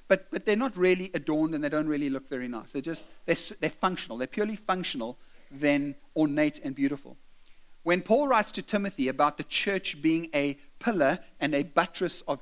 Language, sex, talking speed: English, male, 195 wpm